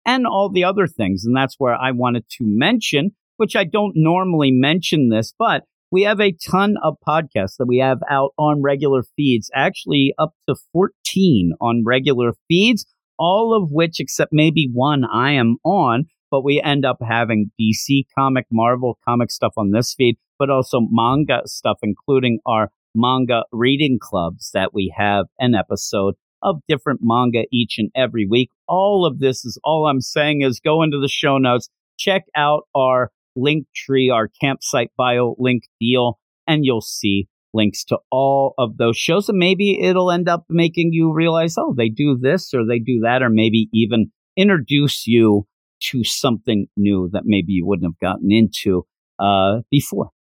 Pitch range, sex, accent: 115-155 Hz, male, American